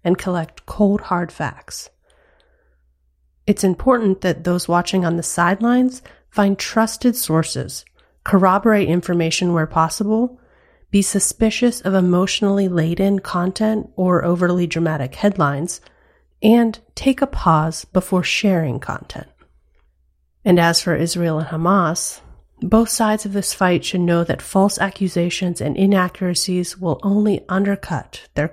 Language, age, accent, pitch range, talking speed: English, 30-49, American, 170-205 Hz, 120 wpm